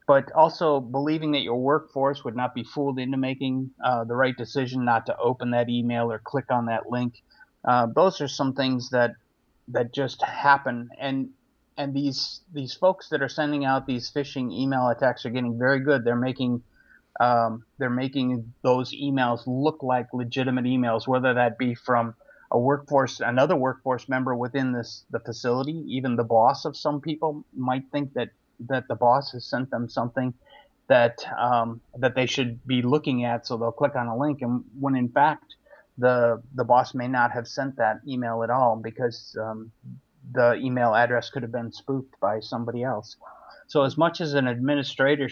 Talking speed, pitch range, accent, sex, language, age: 185 wpm, 120-135 Hz, American, male, English, 30-49